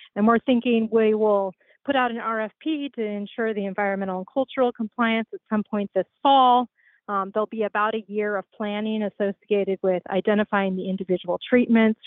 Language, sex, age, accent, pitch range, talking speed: English, female, 30-49, American, 195-235 Hz, 175 wpm